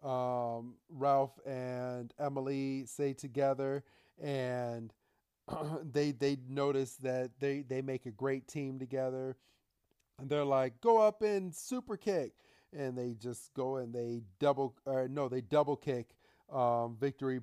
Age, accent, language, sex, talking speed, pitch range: 40-59, American, English, male, 140 wpm, 125-145 Hz